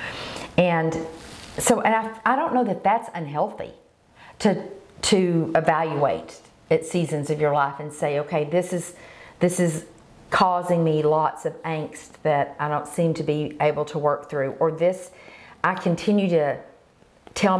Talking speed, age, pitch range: 155 wpm, 50-69, 145-180 Hz